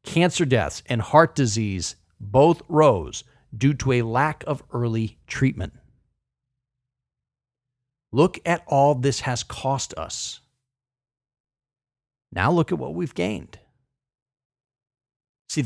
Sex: male